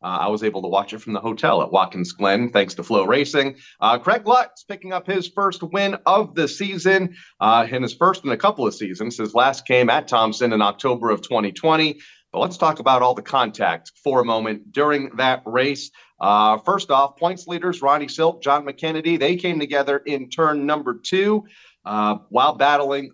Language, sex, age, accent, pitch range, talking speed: English, male, 40-59, American, 115-165 Hz, 200 wpm